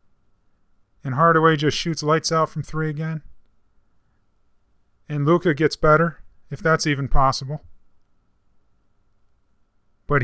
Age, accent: 30-49, American